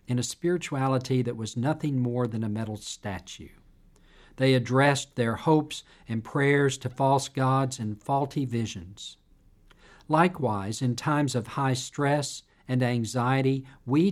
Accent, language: American, English